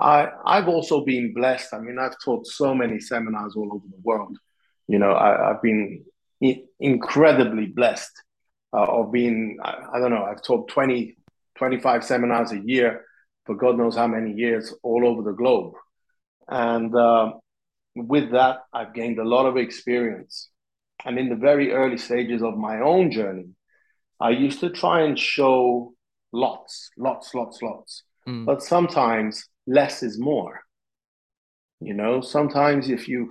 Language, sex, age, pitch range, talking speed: English, male, 30-49, 115-135 Hz, 155 wpm